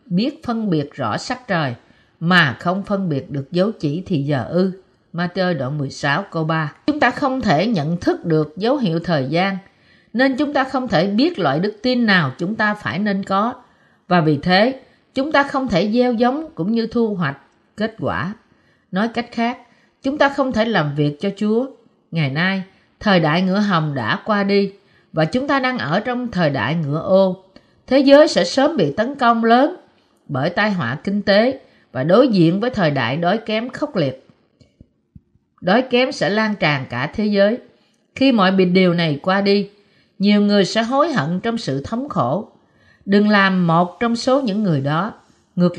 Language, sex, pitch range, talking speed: Vietnamese, female, 165-235 Hz, 195 wpm